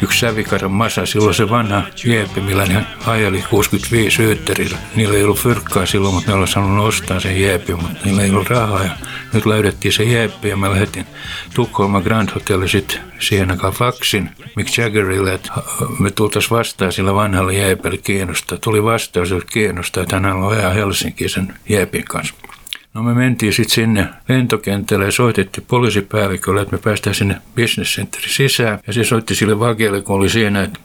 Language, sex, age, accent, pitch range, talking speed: Finnish, male, 60-79, native, 100-115 Hz, 175 wpm